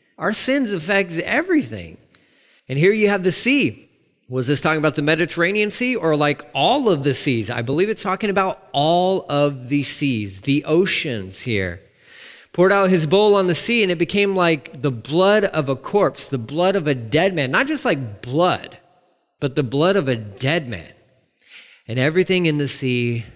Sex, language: male, English